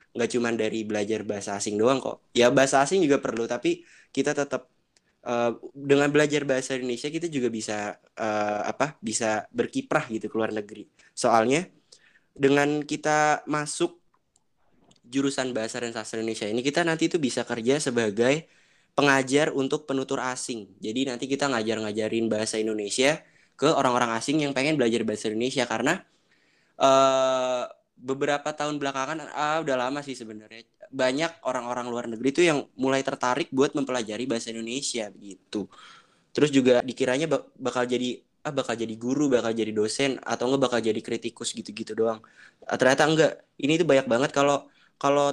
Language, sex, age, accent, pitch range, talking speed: Indonesian, male, 20-39, native, 115-140 Hz, 155 wpm